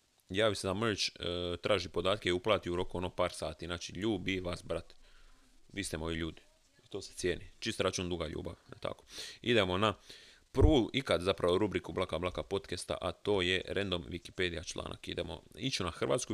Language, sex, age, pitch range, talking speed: Croatian, male, 30-49, 85-105 Hz, 185 wpm